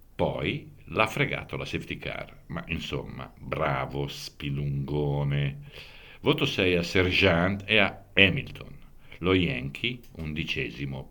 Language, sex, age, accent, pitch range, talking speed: Italian, male, 60-79, native, 75-95 Hz, 110 wpm